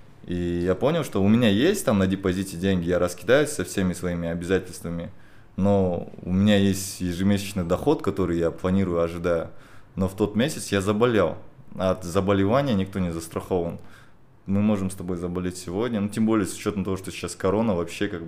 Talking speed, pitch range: 185 wpm, 90-105 Hz